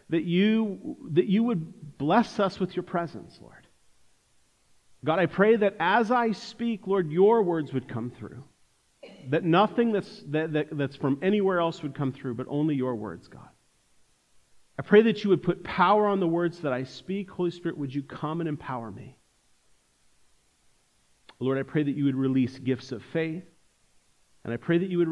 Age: 40-59